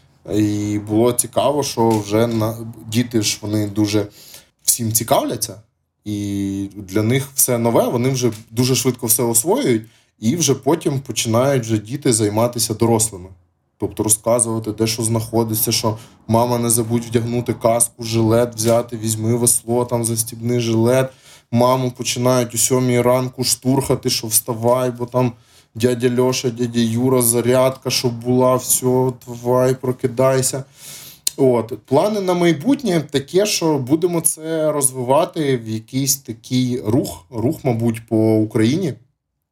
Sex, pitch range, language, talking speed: male, 110-125 Hz, Ukrainian, 130 wpm